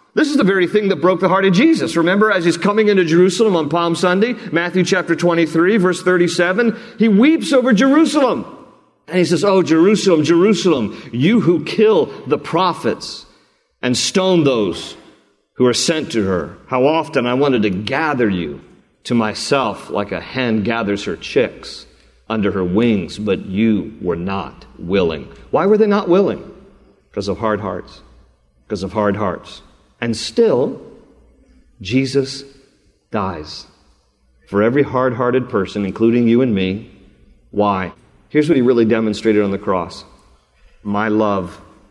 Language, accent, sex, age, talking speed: English, American, male, 50-69, 155 wpm